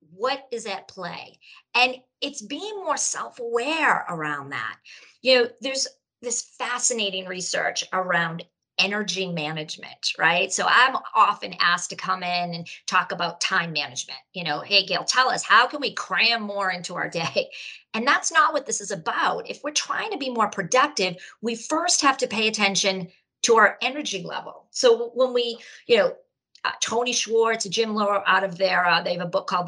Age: 40-59